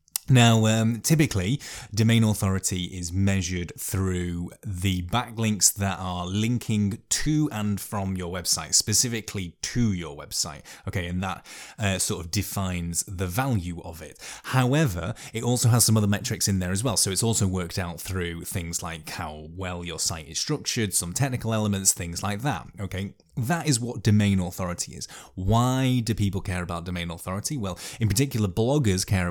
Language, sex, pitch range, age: English, male, 90-110 Hz, 20-39